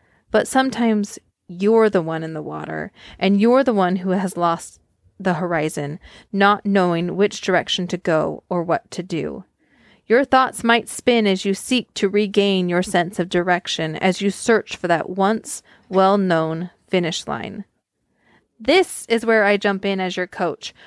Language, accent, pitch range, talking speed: English, American, 175-210 Hz, 170 wpm